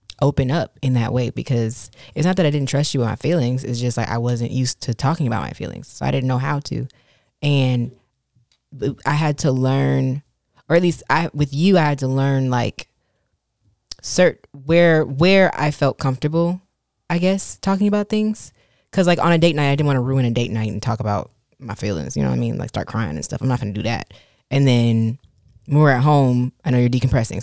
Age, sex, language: 20-39, female, English